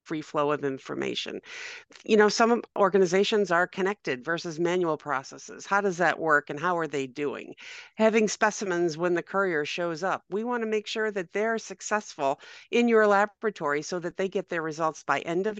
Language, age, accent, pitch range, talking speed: English, 50-69, American, 175-225 Hz, 190 wpm